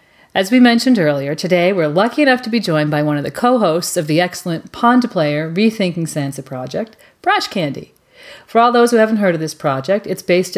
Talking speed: 210 wpm